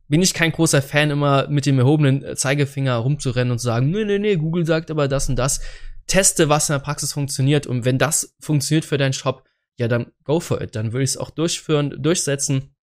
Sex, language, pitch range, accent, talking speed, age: male, German, 125-150 Hz, German, 220 wpm, 20-39